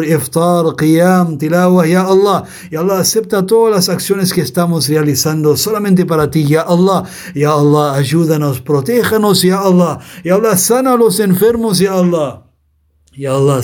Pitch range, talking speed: 145-185 Hz, 155 wpm